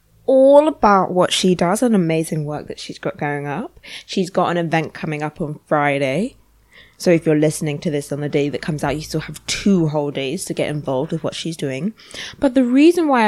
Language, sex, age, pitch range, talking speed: English, female, 20-39, 155-200 Hz, 225 wpm